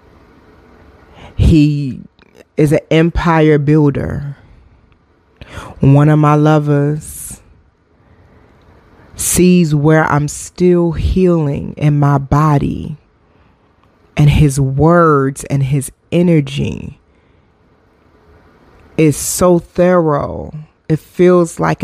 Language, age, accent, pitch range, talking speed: English, 20-39, American, 135-165 Hz, 80 wpm